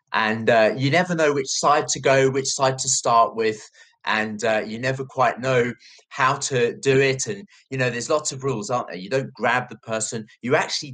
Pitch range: 120-160 Hz